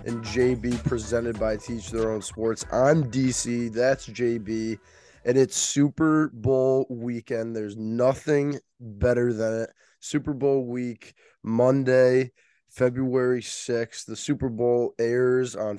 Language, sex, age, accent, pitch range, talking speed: English, male, 20-39, American, 110-130 Hz, 125 wpm